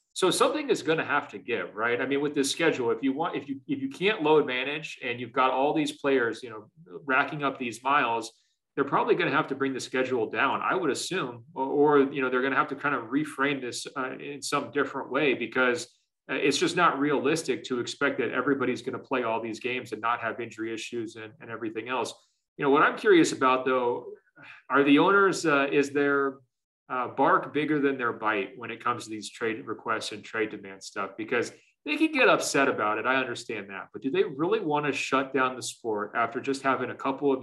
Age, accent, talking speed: 40-59, American, 235 wpm